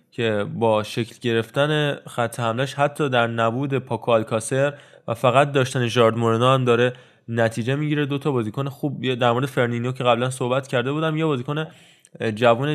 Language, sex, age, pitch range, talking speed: Persian, male, 20-39, 115-135 Hz, 155 wpm